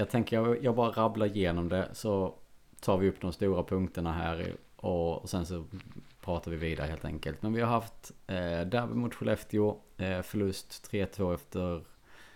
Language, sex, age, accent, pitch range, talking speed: Swedish, male, 30-49, Norwegian, 85-105 Hz, 160 wpm